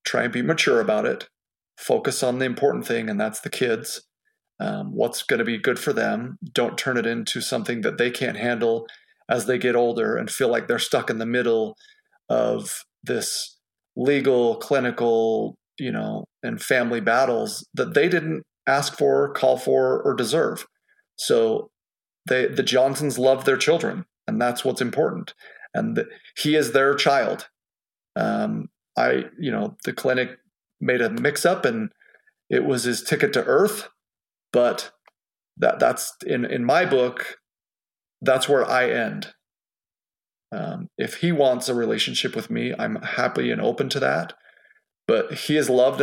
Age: 30-49